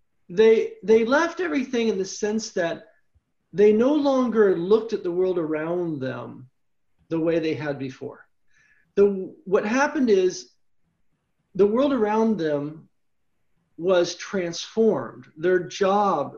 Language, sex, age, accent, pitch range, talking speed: English, male, 40-59, American, 170-230 Hz, 125 wpm